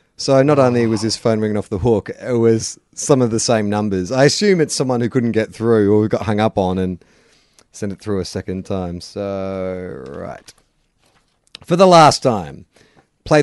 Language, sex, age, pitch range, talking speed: English, male, 30-49, 100-150 Hz, 195 wpm